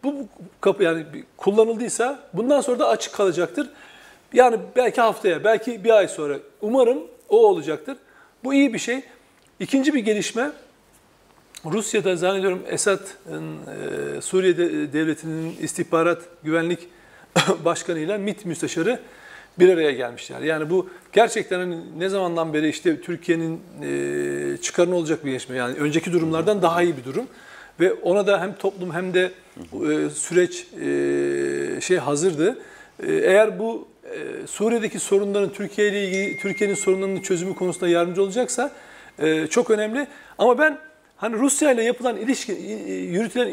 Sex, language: male, Turkish